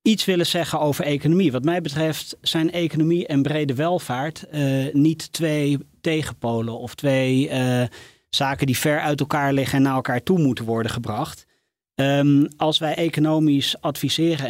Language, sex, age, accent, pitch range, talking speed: Dutch, male, 30-49, Dutch, 130-160 Hz, 155 wpm